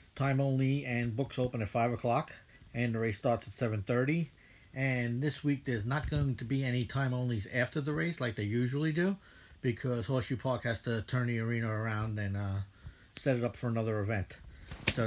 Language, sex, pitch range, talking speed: English, male, 110-130 Hz, 200 wpm